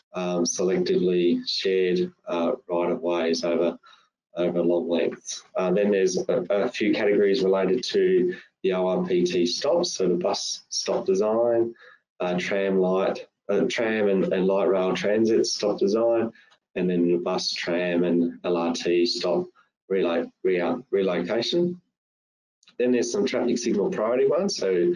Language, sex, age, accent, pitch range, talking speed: English, male, 20-39, Australian, 90-115 Hz, 125 wpm